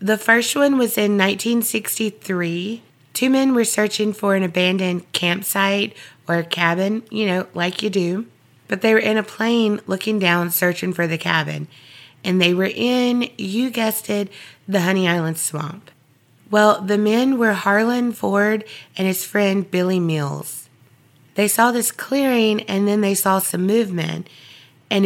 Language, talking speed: English, 160 wpm